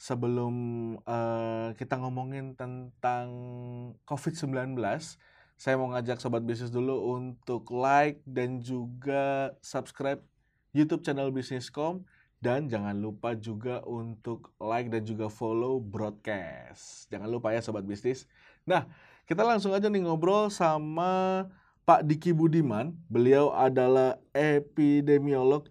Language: Indonesian